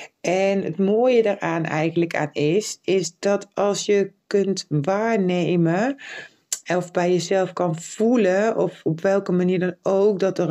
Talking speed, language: 150 wpm, Dutch